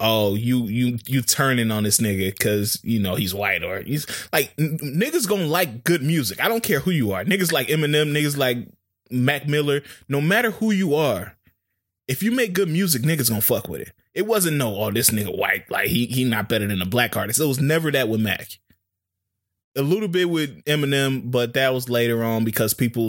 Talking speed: 215 wpm